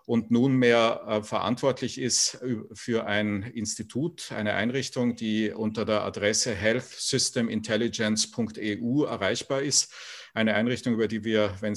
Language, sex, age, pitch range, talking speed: English, male, 50-69, 110-125 Hz, 115 wpm